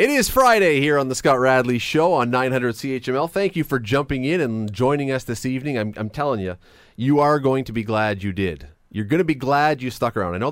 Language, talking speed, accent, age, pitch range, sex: English, 245 wpm, American, 30-49, 100-130 Hz, male